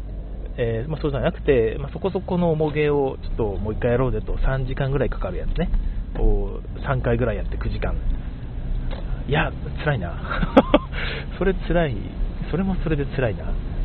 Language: Japanese